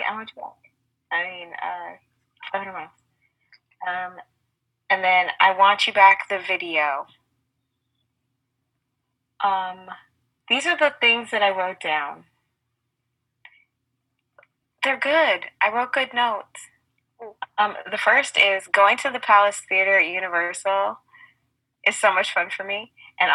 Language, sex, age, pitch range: English, female, 20-39, 155-215 Hz